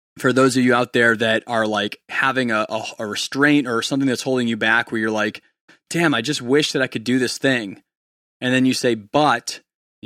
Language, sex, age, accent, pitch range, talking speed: English, male, 20-39, American, 110-130 Hz, 235 wpm